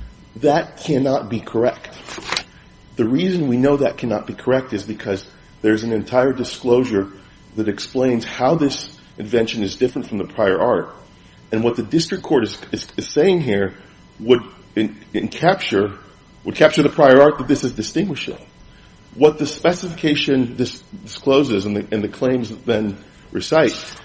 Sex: male